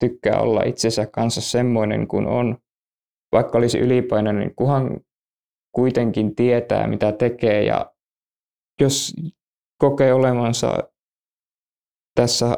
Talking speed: 100 wpm